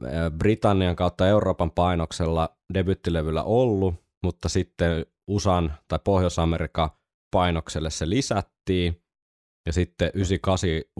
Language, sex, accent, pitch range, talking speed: Finnish, male, native, 80-95 Hz, 95 wpm